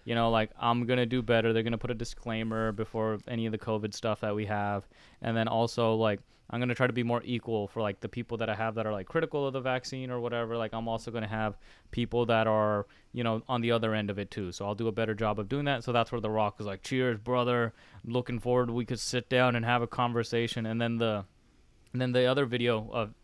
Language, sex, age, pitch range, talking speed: English, male, 20-39, 110-130 Hz, 265 wpm